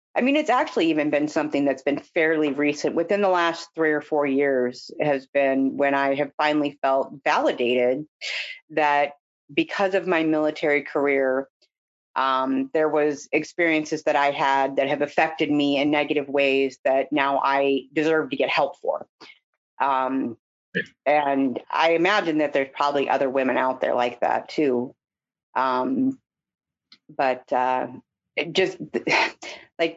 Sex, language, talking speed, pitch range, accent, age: female, English, 150 wpm, 140-195 Hz, American, 30-49